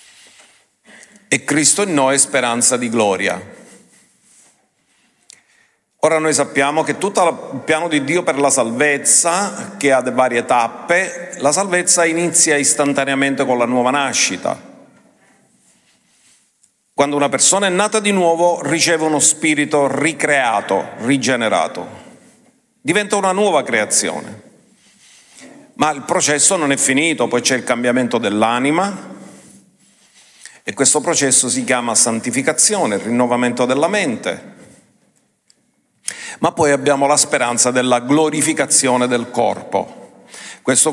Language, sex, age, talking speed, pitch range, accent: Italian, male, 50-69, 115 wpm, 130-180 Hz, native